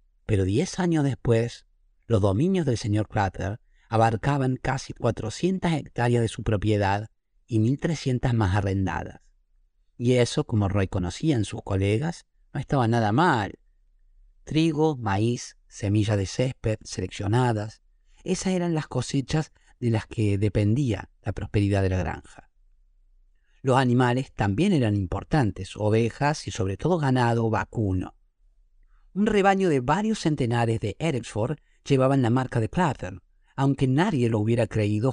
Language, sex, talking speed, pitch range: Spanish, male, 130 wpm, 100-135 Hz